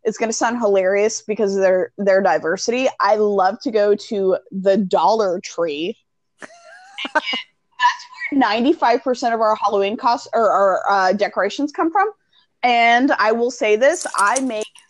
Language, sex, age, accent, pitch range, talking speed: English, female, 20-39, American, 215-295 Hz, 155 wpm